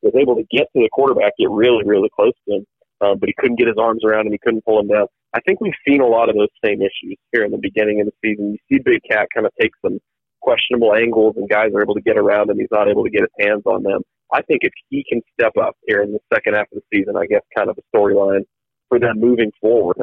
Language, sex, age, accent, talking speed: English, male, 30-49, American, 290 wpm